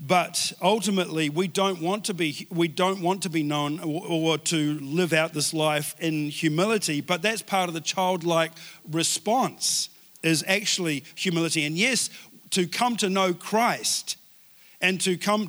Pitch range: 165-200 Hz